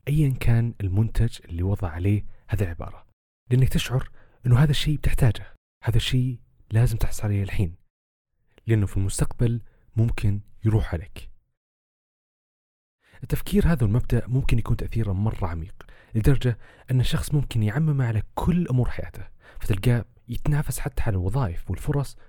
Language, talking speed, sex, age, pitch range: Arabic, 130 wpm, male, 40-59, 100-135 Hz